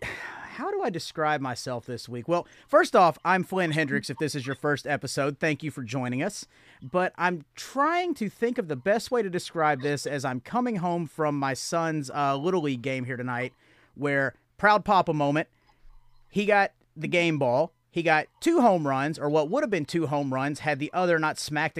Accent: American